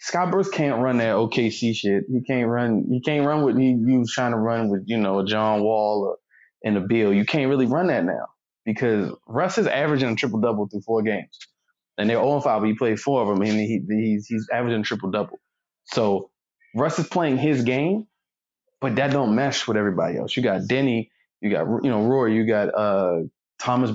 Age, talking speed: 20-39, 220 wpm